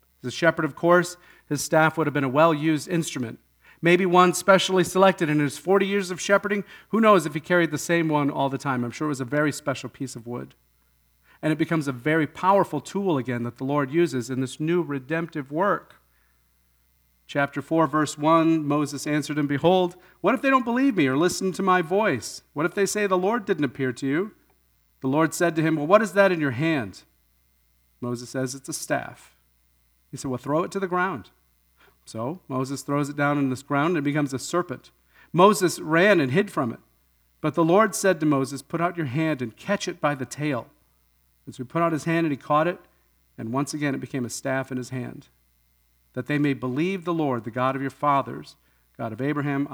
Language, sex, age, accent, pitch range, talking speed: English, male, 40-59, American, 120-170 Hz, 220 wpm